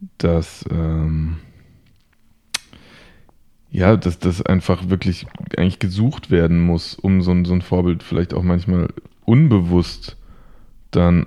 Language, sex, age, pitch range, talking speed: German, male, 20-39, 85-95 Hz, 110 wpm